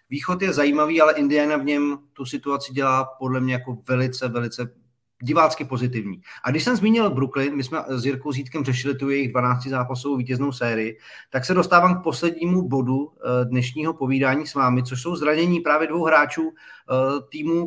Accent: native